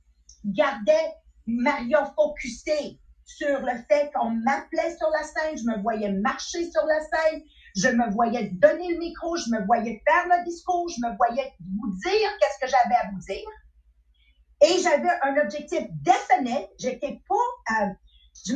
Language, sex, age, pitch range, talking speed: English, female, 40-59, 200-310 Hz, 160 wpm